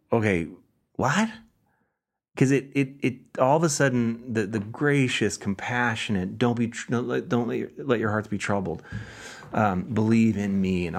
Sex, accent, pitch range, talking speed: male, American, 95-120 Hz, 170 wpm